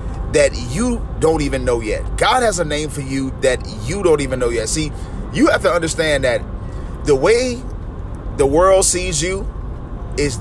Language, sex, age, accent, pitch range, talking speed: English, male, 30-49, American, 130-165 Hz, 180 wpm